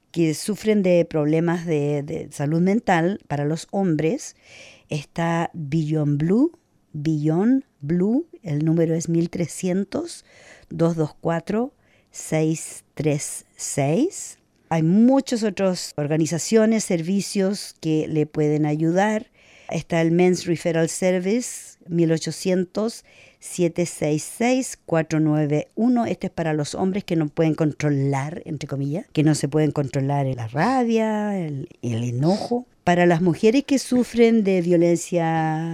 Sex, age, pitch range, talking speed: female, 50-69, 155-195 Hz, 105 wpm